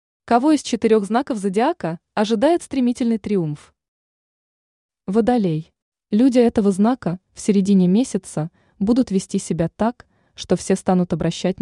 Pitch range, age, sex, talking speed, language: 170-220 Hz, 20-39, female, 120 wpm, Russian